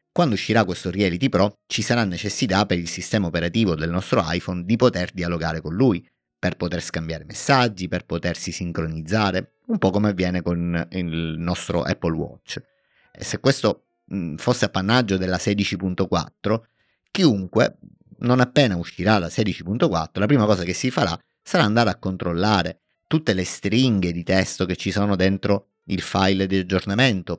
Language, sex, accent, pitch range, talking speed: Italian, male, native, 85-105 Hz, 160 wpm